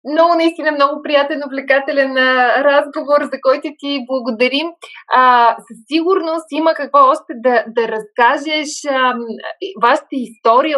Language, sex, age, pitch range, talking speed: Bulgarian, female, 20-39, 220-270 Hz, 115 wpm